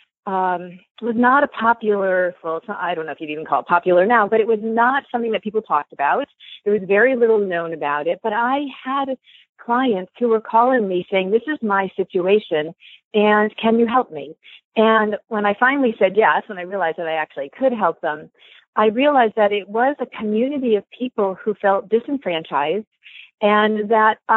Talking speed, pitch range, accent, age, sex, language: 200 wpm, 185-235 Hz, American, 40-59, female, English